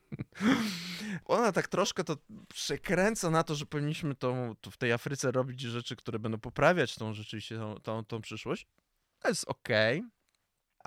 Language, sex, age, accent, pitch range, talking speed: Polish, male, 20-39, native, 100-120 Hz, 155 wpm